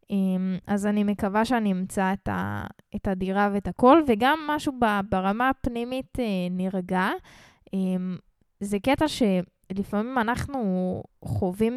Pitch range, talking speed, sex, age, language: 195-255 Hz, 95 wpm, female, 10-29, Hebrew